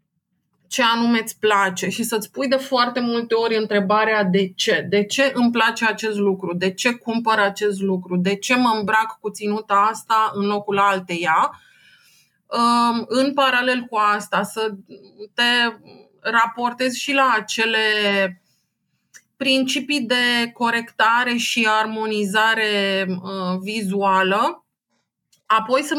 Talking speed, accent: 120 wpm, native